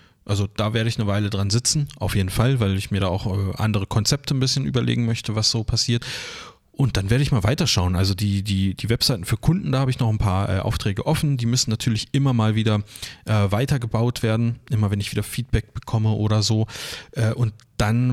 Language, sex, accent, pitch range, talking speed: German, male, German, 105-125 Hz, 220 wpm